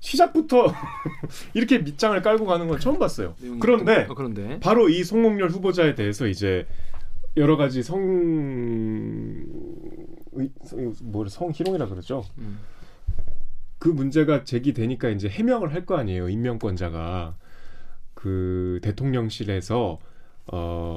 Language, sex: Korean, male